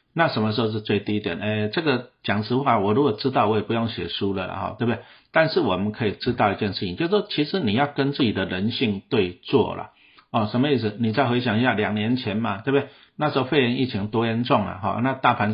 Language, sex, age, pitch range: Chinese, male, 50-69, 105-130 Hz